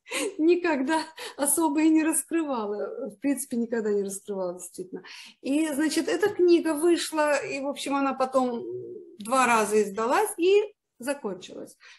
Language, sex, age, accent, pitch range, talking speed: Russian, female, 50-69, native, 215-290 Hz, 130 wpm